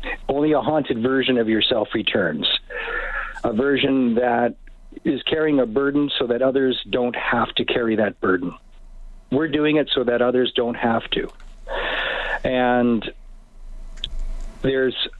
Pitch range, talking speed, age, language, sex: 115-140 Hz, 135 wpm, 50-69, English, male